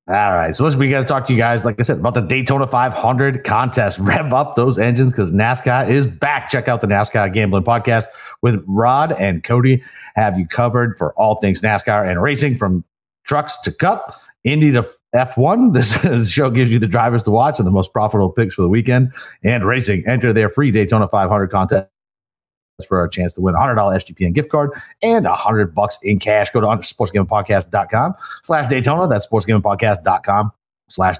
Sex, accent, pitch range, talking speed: male, American, 100-125 Hz, 195 wpm